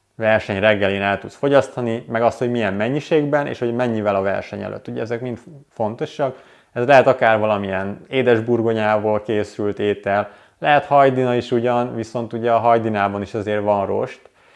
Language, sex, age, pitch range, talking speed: Hungarian, male, 30-49, 105-125 Hz, 160 wpm